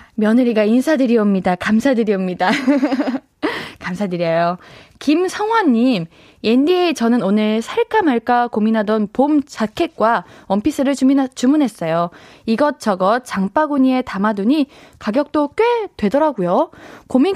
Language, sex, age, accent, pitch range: Korean, female, 20-39, native, 210-290 Hz